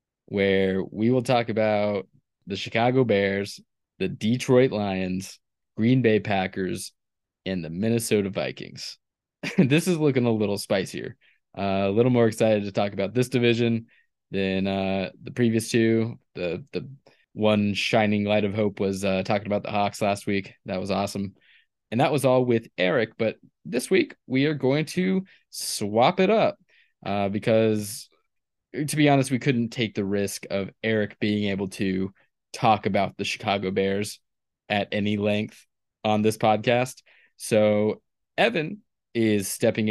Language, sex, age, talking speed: English, male, 20-39, 155 wpm